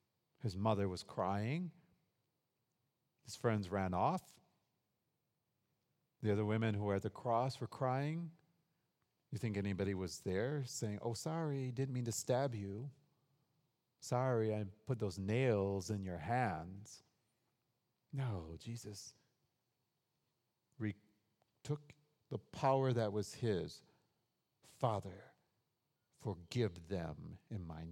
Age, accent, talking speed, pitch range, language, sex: 50-69, American, 110 wpm, 95-130 Hz, English, male